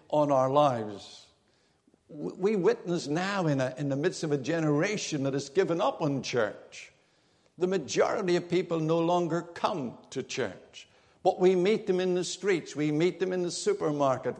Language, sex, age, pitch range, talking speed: English, male, 60-79, 145-195 Hz, 170 wpm